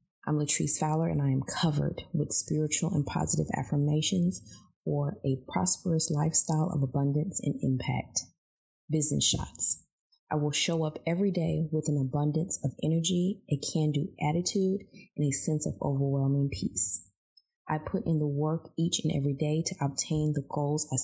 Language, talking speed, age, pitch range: English, 160 wpm, 20-39, 140-165 Hz